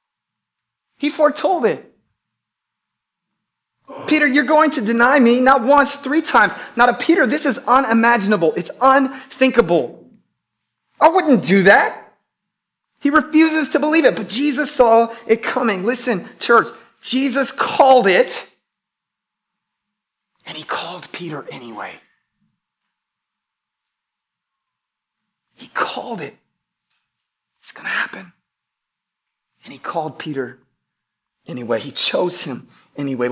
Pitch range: 165-260 Hz